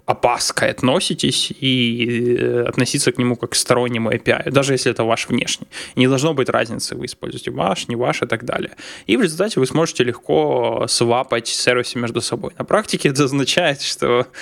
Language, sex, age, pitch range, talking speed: Russian, male, 10-29, 120-135 Hz, 175 wpm